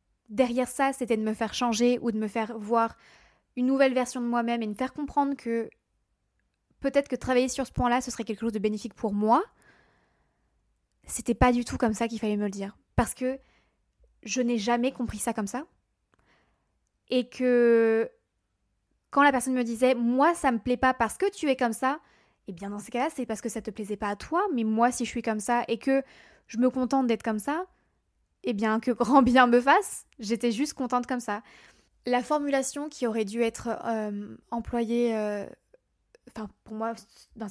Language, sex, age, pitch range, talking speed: French, female, 20-39, 220-255 Hz, 210 wpm